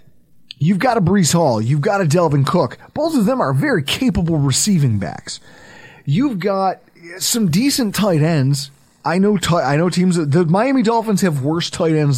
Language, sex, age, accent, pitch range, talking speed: English, male, 30-49, American, 130-185 Hz, 180 wpm